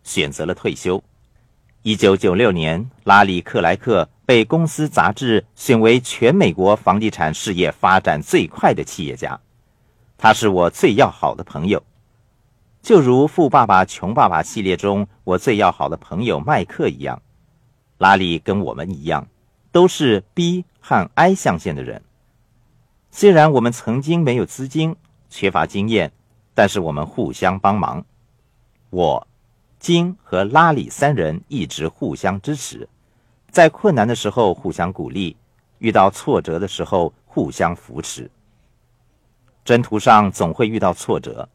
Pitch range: 105-135 Hz